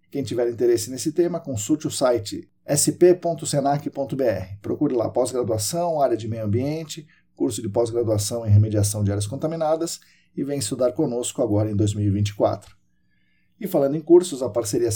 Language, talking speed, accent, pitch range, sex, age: Portuguese, 150 wpm, Brazilian, 110-145 Hz, male, 50-69